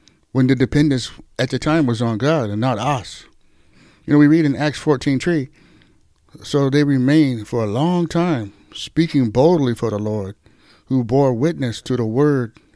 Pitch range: 120-150 Hz